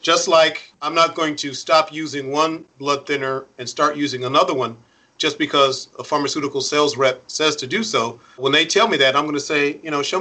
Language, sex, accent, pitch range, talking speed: English, male, American, 135-155 Hz, 225 wpm